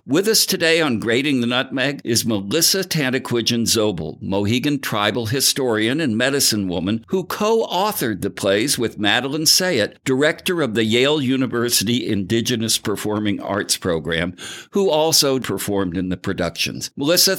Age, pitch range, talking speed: 60-79, 110-145 Hz, 135 wpm